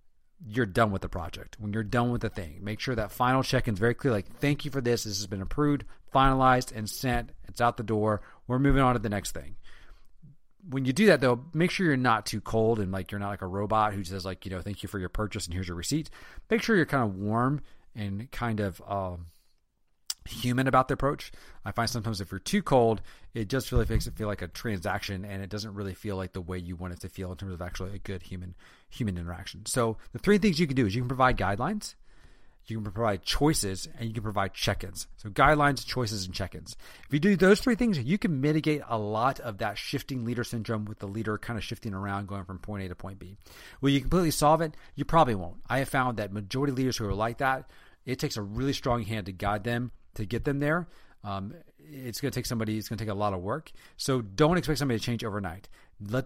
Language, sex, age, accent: English, male, 30-49, American